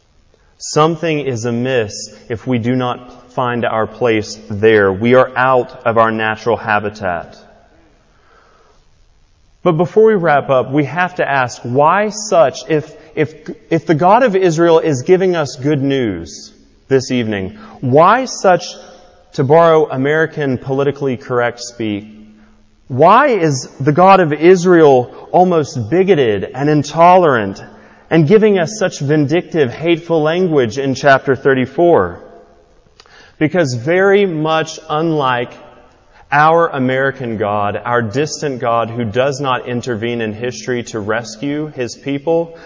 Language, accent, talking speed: English, American, 130 wpm